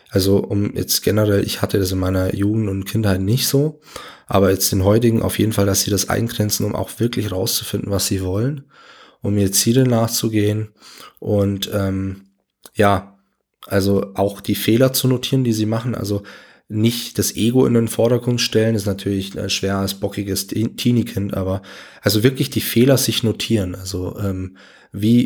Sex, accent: male, German